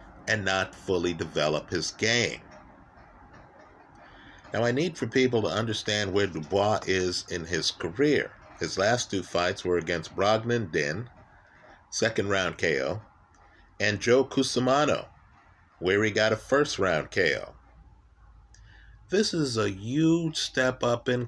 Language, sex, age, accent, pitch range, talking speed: English, male, 50-69, American, 90-125 Hz, 135 wpm